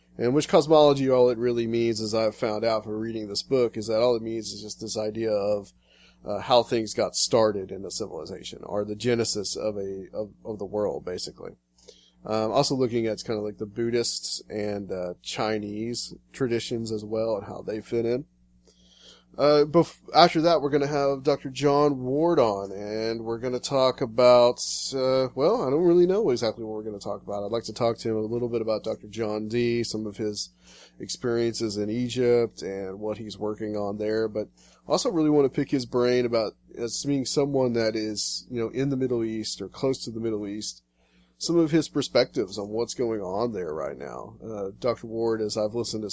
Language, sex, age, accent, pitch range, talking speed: English, male, 20-39, American, 105-125 Hz, 215 wpm